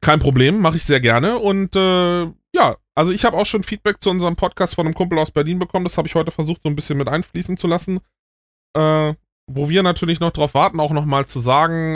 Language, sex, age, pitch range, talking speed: German, male, 20-39, 135-165 Hz, 235 wpm